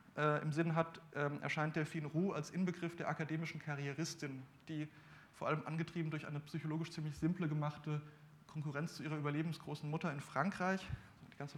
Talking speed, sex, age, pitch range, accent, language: 170 wpm, male, 30-49, 145-165 Hz, German, German